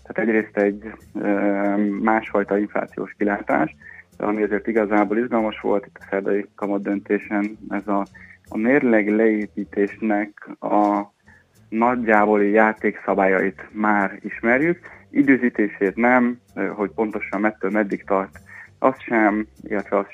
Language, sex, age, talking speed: Hungarian, male, 20-39, 105 wpm